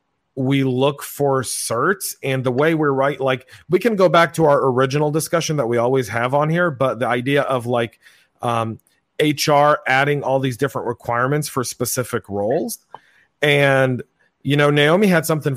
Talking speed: 175 wpm